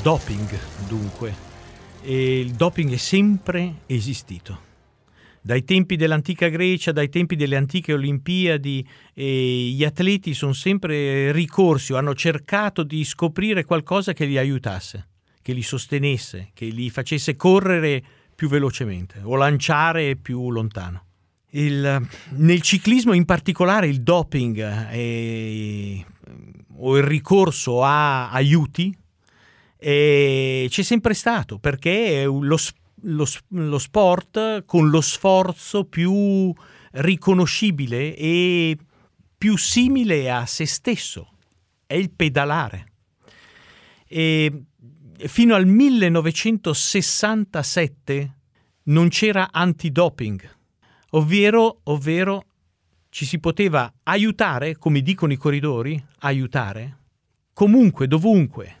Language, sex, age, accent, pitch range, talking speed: Italian, male, 50-69, native, 125-175 Hz, 105 wpm